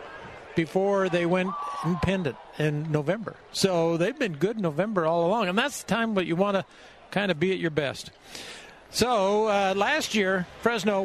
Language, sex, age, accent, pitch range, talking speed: English, male, 50-69, American, 175-235 Hz, 180 wpm